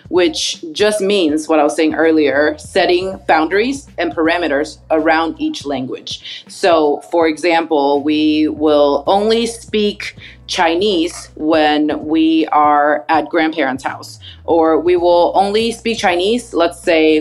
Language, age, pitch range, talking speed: English, 30-49, 160-225 Hz, 130 wpm